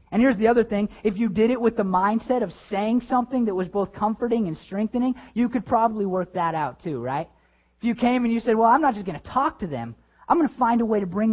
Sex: male